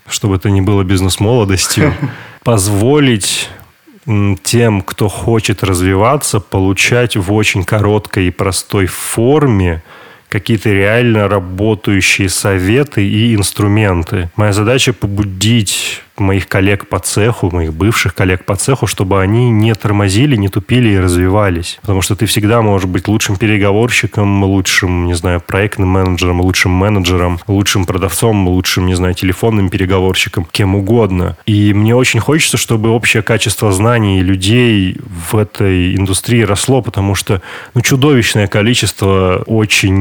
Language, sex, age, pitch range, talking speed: Russian, male, 20-39, 95-115 Hz, 130 wpm